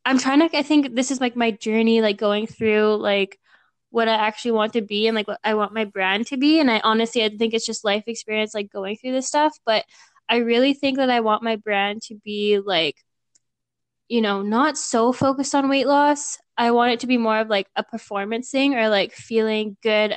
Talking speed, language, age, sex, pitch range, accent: 230 wpm, English, 10-29, female, 215-250 Hz, American